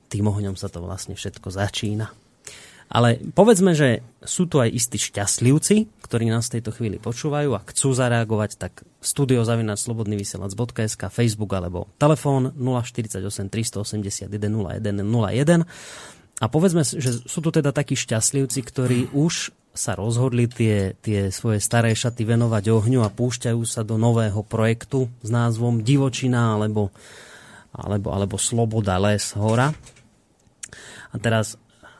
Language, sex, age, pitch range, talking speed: Slovak, male, 30-49, 105-125 Hz, 130 wpm